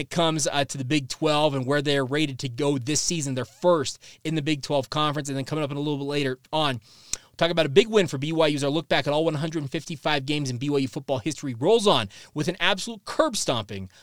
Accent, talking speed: American, 250 wpm